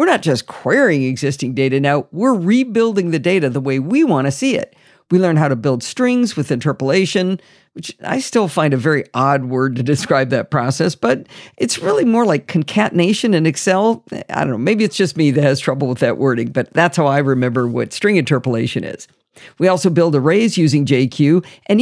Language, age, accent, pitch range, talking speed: English, 50-69, American, 145-210 Hz, 205 wpm